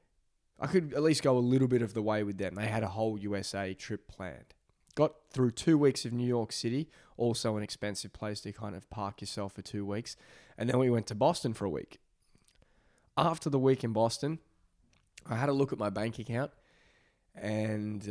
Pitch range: 100-120 Hz